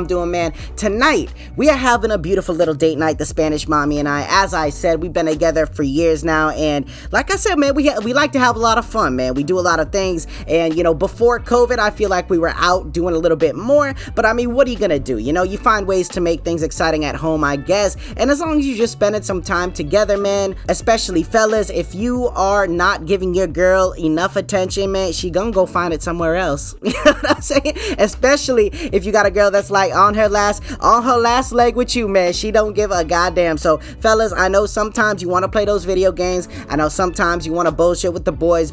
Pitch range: 170-225 Hz